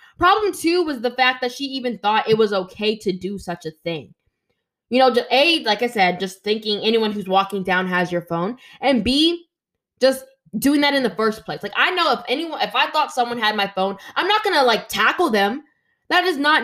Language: English